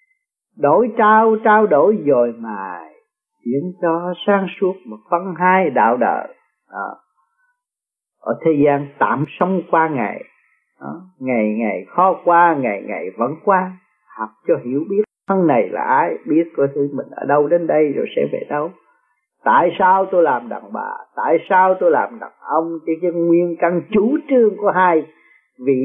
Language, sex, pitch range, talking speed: Vietnamese, male, 140-225 Hz, 170 wpm